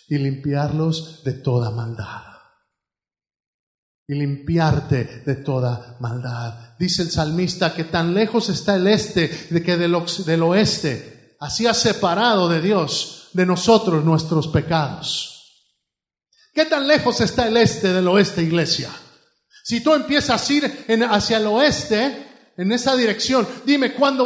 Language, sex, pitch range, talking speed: Spanish, male, 160-260 Hz, 140 wpm